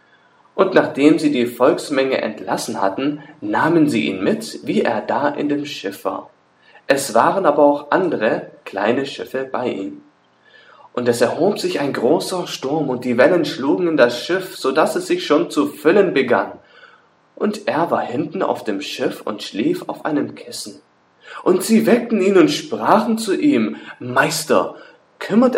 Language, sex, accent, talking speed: English, male, German, 165 wpm